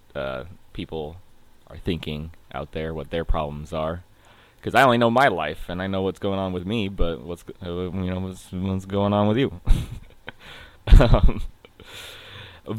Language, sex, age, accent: English, male, 20-39, American